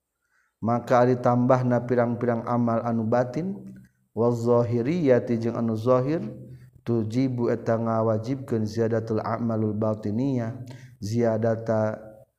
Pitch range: 110-125 Hz